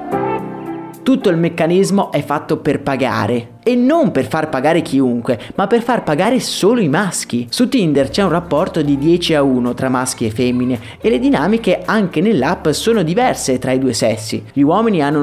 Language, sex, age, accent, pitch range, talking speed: Italian, male, 30-49, native, 135-195 Hz, 185 wpm